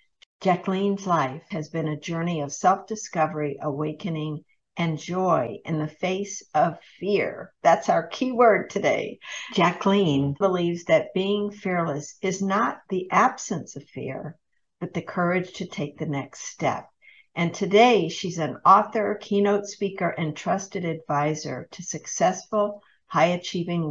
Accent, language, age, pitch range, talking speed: American, English, 60-79, 160-210 Hz, 135 wpm